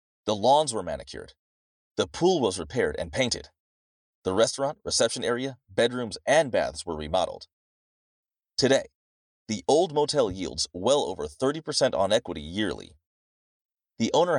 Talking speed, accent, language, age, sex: 135 wpm, American, English, 30-49, male